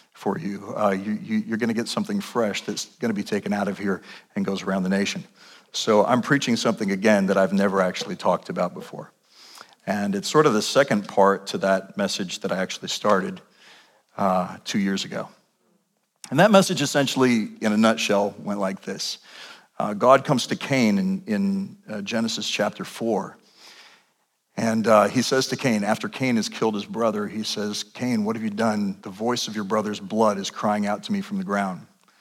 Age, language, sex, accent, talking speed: 50-69, English, male, American, 200 wpm